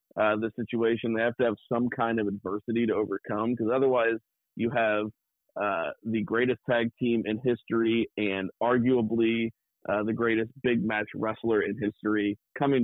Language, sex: English, male